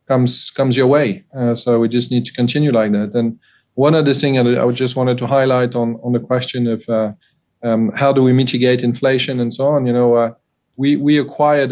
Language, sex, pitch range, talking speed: English, male, 120-130 Hz, 225 wpm